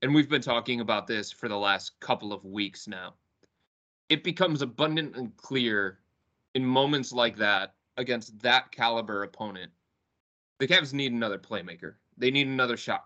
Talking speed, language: 160 wpm, English